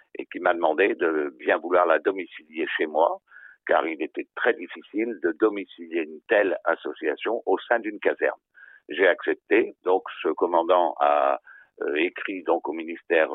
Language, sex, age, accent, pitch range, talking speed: French, male, 60-79, French, 360-455 Hz, 155 wpm